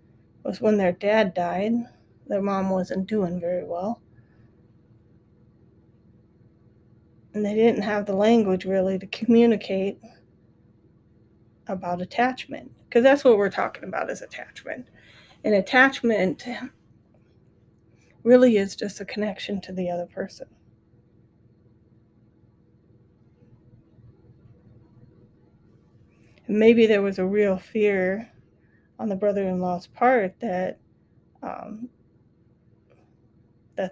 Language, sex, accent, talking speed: English, female, American, 95 wpm